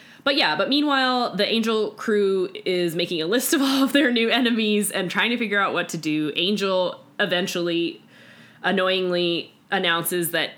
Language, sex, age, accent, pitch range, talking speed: English, female, 20-39, American, 160-220 Hz, 170 wpm